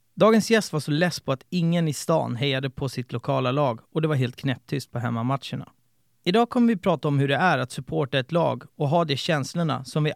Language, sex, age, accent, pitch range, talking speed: Swedish, male, 30-49, native, 130-165 Hz, 235 wpm